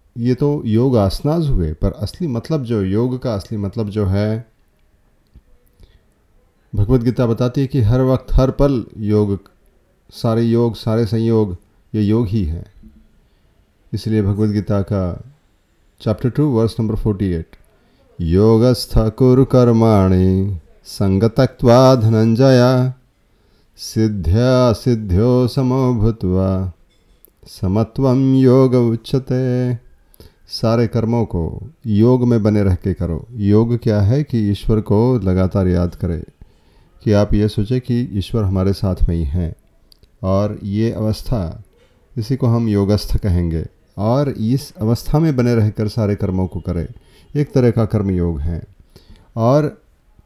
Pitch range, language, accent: 95-125 Hz, Hindi, native